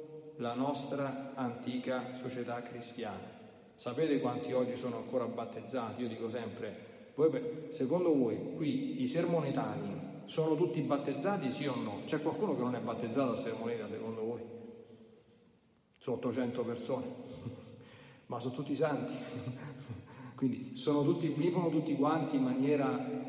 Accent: native